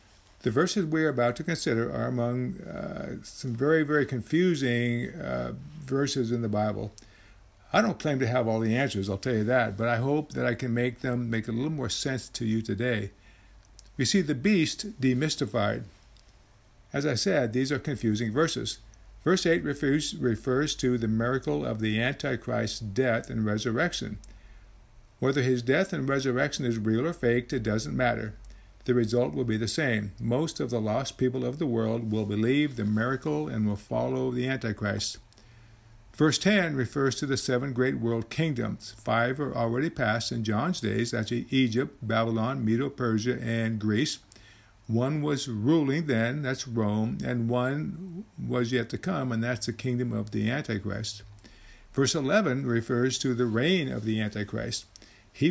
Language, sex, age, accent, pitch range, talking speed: English, male, 60-79, American, 110-135 Hz, 170 wpm